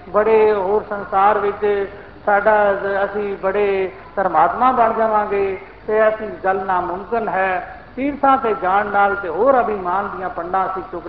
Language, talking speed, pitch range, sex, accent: Hindi, 110 wpm, 200-240 Hz, male, native